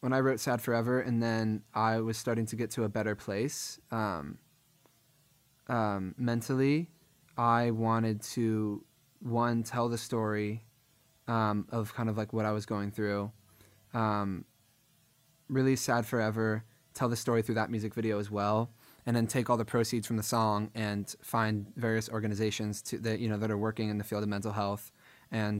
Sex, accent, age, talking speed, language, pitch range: male, American, 20-39, 180 wpm, English, 110-120 Hz